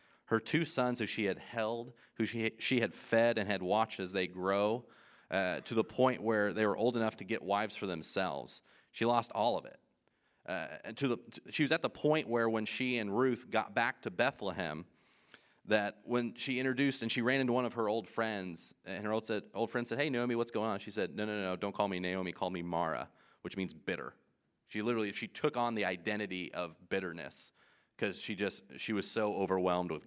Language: English